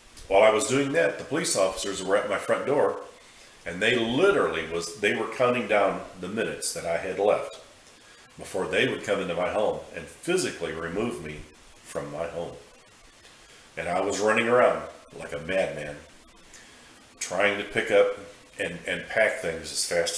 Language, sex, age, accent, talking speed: English, male, 40-59, American, 175 wpm